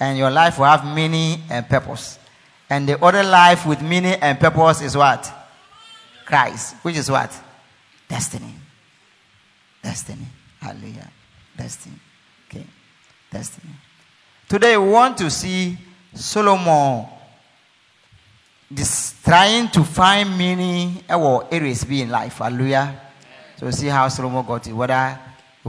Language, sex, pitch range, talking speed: English, male, 135-185 Hz, 120 wpm